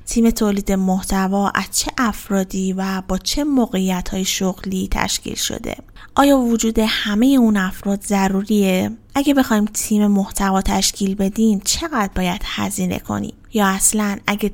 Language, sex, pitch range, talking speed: Persian, female, 190-230 Hz, 130 wpm